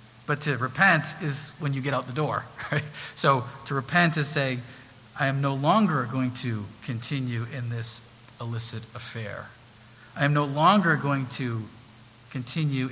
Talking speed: 160 wpm